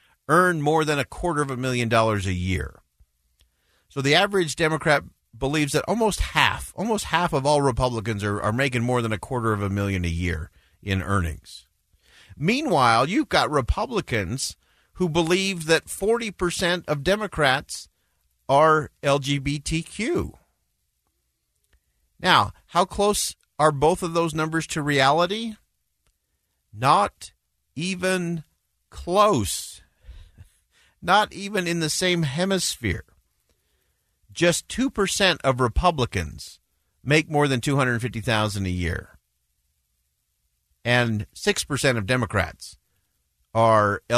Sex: male